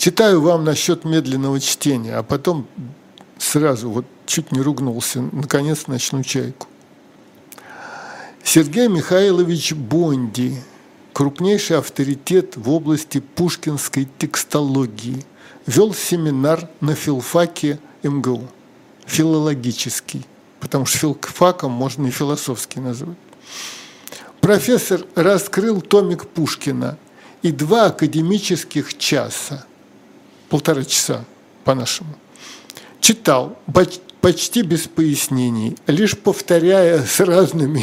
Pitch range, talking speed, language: 135-180 Hz, 90 wpm, Russian